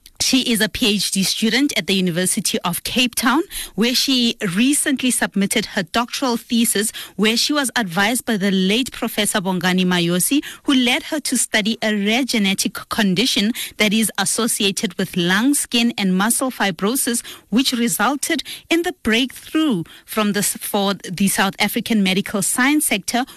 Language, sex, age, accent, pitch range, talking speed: English, female, 30-49, South African, 200-260 Hz, 150 wpm